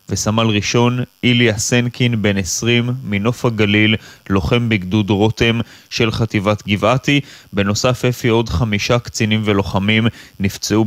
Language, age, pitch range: Hebrew, 20-39, 105-120 Hz